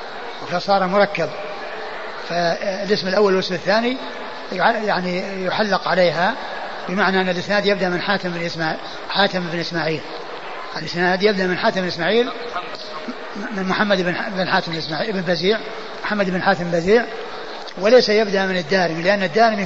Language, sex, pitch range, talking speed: Arabic, male, 180-215 Hz, 120 wpm